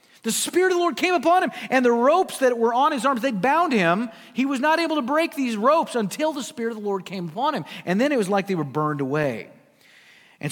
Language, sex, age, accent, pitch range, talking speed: English, male, 40-59, American, 180-245 Hz, 260 wpm